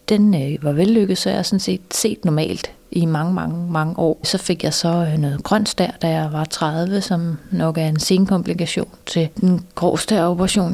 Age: 30-49